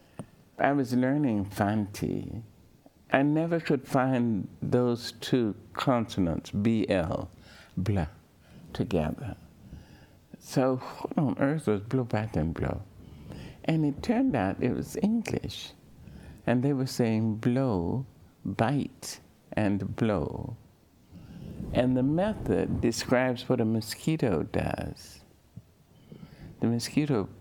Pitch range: 105-135 Hz